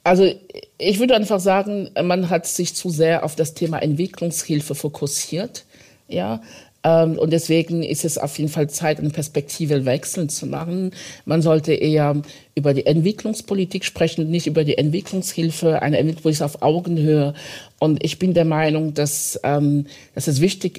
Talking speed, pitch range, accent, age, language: 160 wpm, 145-175 Hz, German, 50-69, German